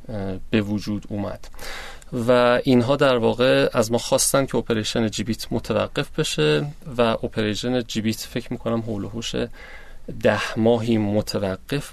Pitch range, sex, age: 105-135 Hz, male, 30-49